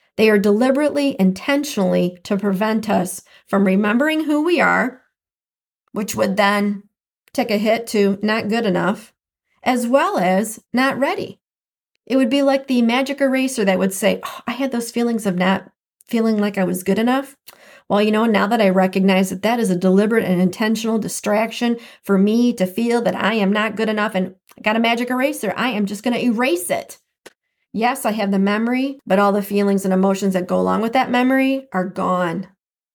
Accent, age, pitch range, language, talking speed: American, 40-59, 200-260 Hz, English, 195 wpm